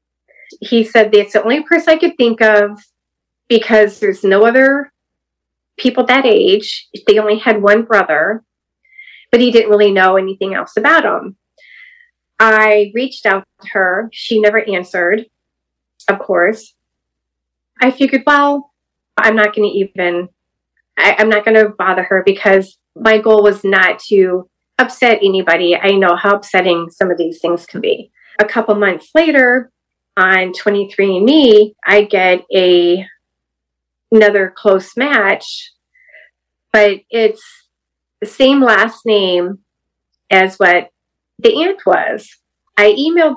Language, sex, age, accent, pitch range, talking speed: English, female, 30-49, American, 190-250 Hz, 135 wpm